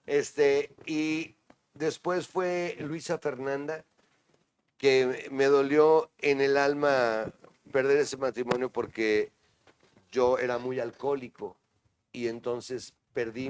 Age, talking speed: 40-59, 100 wpm